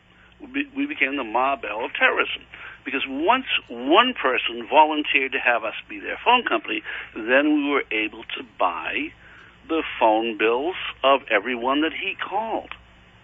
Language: English